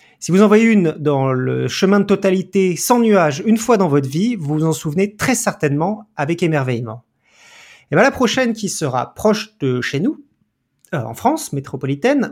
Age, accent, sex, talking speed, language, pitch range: 40-59, French, male, 190 wpm, French, 145-220 Hz